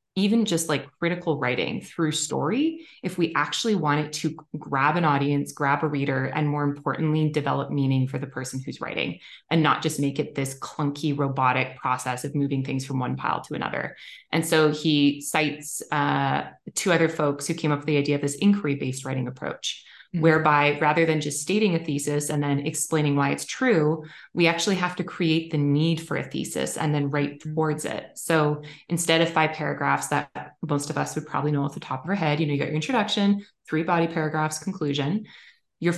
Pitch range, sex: 145-165 Hz, female